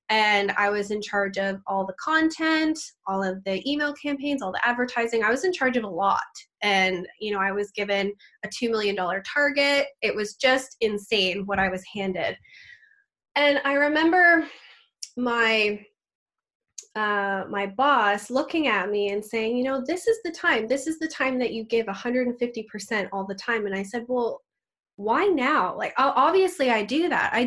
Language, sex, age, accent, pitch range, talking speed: English, female, 10-29, American, 210-285 Hz, 180 wpm